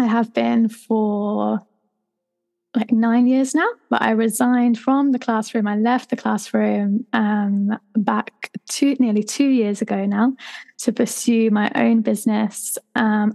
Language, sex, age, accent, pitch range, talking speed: English, female, 10-29, British, 215-245 Hz, 145 wpm